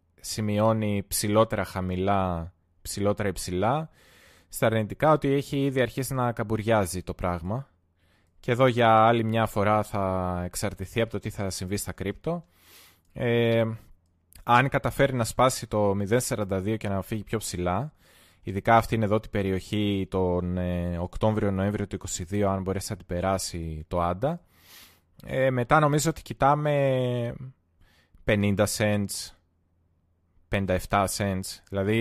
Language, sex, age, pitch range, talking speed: Greek, male, 20-39, 90-120 Hz, 125 wpm